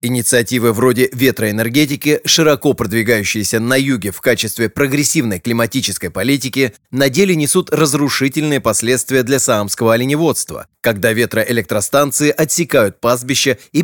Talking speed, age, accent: 110 wpm, 30-49, native